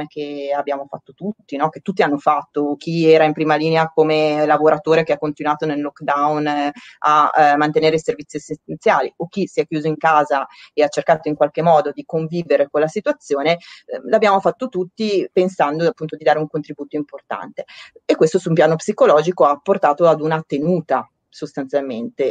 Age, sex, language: 30-49, female, Italian